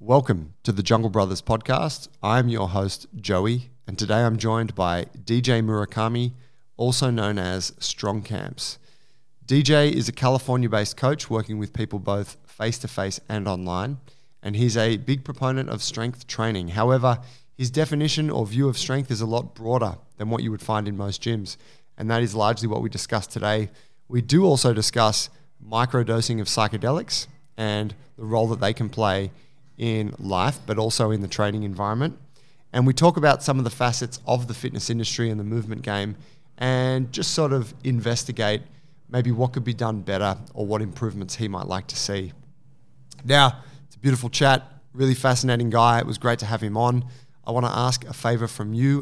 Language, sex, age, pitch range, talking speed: English, male, 20-39, 110-135 Hz, 185 wpm